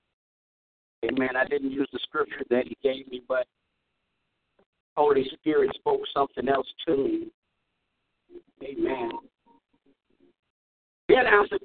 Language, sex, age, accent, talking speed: English, male, 50-69, American, 115 wpm